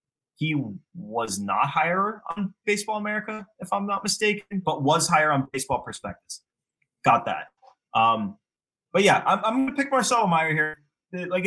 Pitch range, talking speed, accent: 125-190 Hz, 160 wpm, American